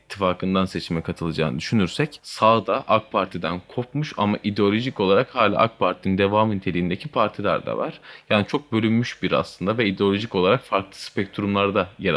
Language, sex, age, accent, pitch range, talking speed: Turkish, male, 30-49, native, 90-120 Hz, 150 wpm